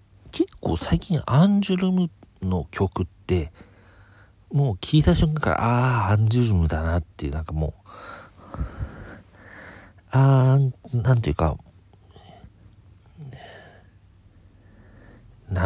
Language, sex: Japanese, male